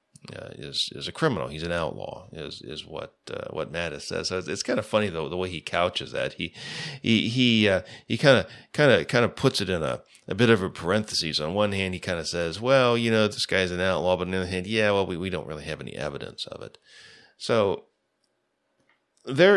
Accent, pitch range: American, 85-120 Hz